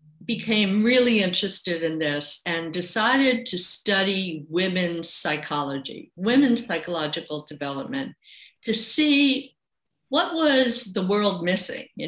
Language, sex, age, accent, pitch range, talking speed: English, female, 60-79, American, 170-245 Hz, 110 wpm